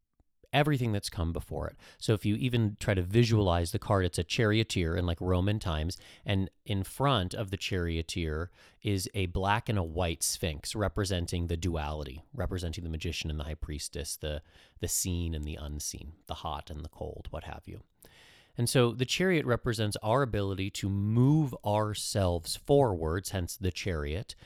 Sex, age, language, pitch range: male, 30-49, English, 85-115 Hz